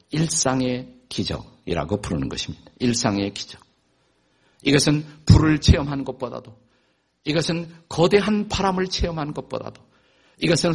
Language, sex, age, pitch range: Korean, male, 50-69, 110-150 Hz